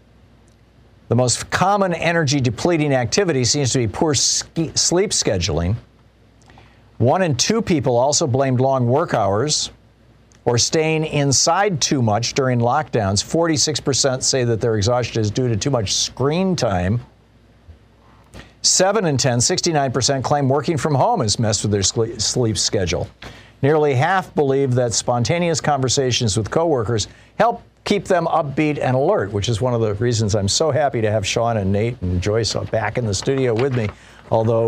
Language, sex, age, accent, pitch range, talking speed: English, male, 50-69, American, 110-135 Hz, 155 wpm